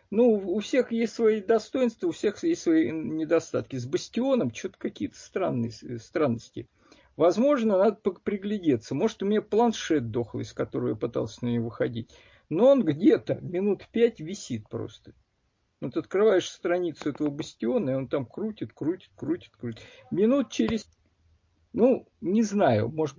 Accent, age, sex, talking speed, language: native, 50-69, male, 145 wpm, Russian